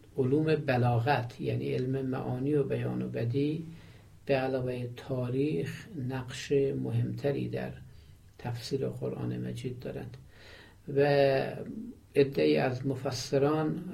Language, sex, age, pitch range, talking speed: Persian, male, 50-69, 120-145 Hz, 100 wpm